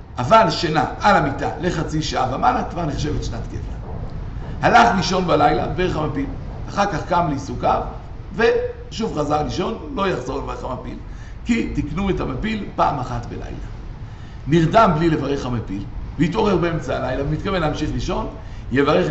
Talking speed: 140 wpm